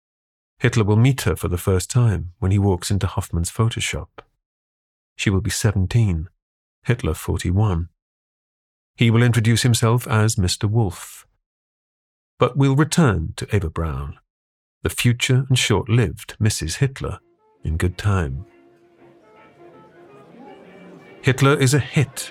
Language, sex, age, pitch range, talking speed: English, male, 40-59, 90-125 Hz, 125 wpm